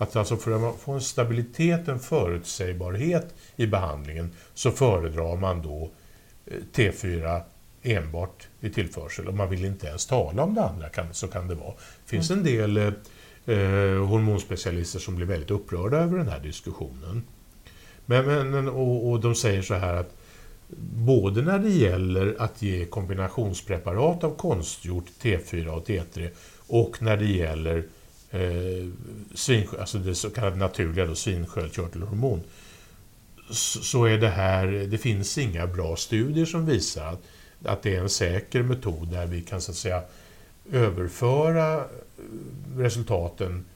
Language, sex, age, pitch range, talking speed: English, male, 60-79, 90-115 Hz, 135 wpm